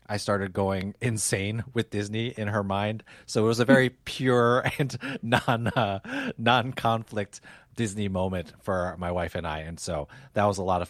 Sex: male